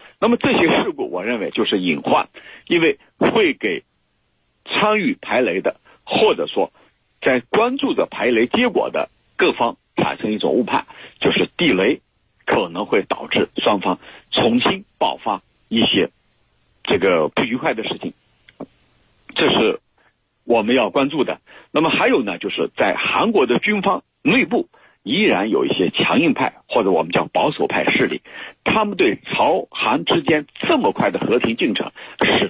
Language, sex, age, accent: Chinese, male, 50-69, native